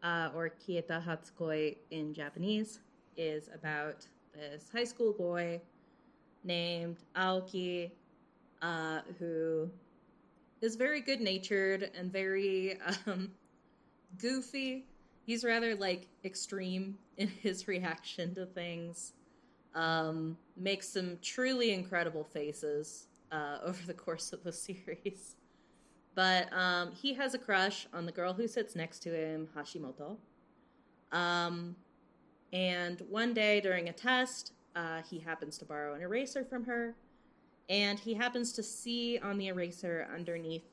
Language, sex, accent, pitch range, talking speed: English, female, American, 165-215 Hz, 125 wpm